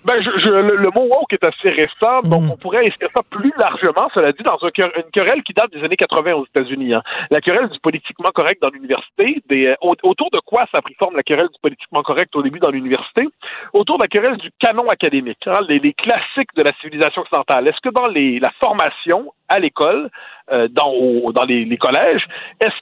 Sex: male